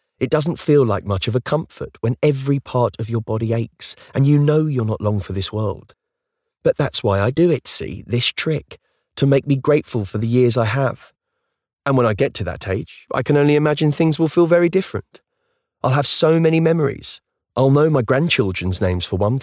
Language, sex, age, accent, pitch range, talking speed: English, male, 30-49, British, 105-145 Hz, 215 wpm